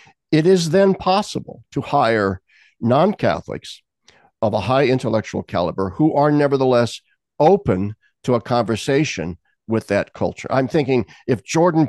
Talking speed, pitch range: 130 wpm, 110-140 Hz